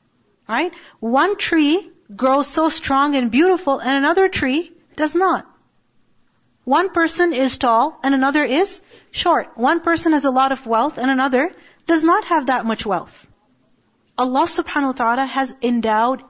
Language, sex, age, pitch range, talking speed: English, female, 40-59, 225-295 Hz, 155 wpm